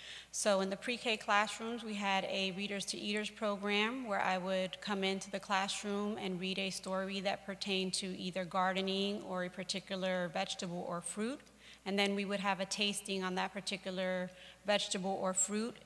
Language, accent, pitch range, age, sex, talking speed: English, American, 190-210 Hz, 30-49, female, 180 wpm